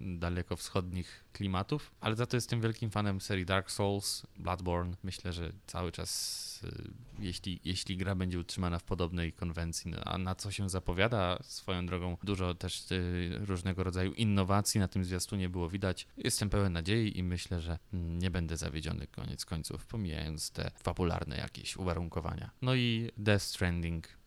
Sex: male